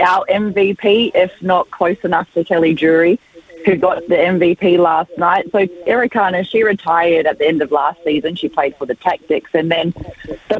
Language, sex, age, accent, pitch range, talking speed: English, female, 30-49, Australian, 170-200 Hz, 185 wpm